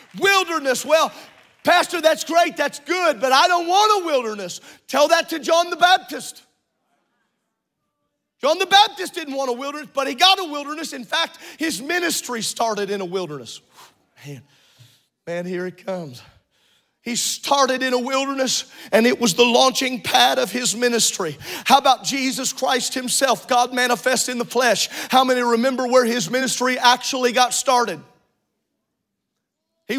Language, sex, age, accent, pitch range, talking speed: English, male, 40-59, American, 235-280 Hz, 155 wpm